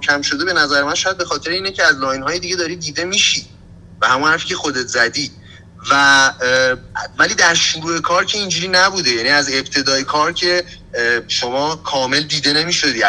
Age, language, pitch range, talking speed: 30-49, Persian, 135-180 Hz, 190 wpm